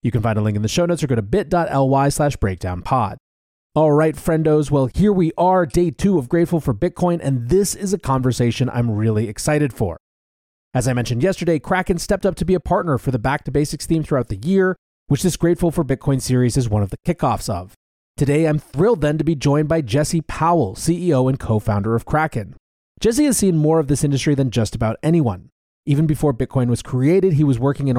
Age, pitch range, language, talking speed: 30-49, 115-165 Hz, English, 225 wpm